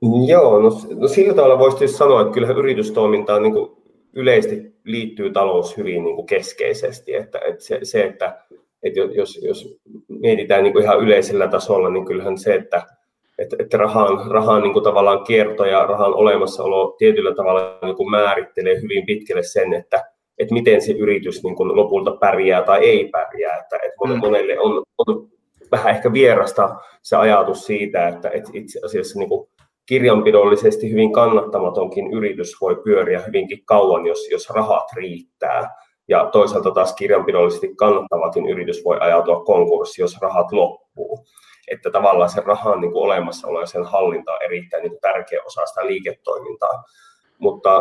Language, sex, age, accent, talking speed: Finnish, male, 30-49, native, 145 wpm